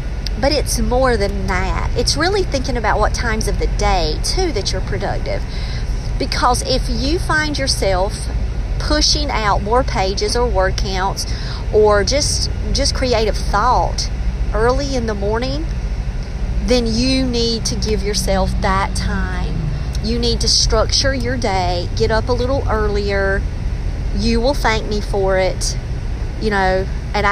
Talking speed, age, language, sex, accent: 145 wpm, 40-59, English, female, American